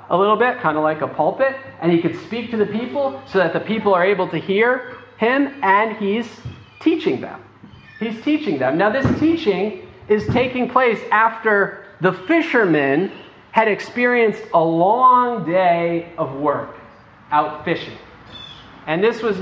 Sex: male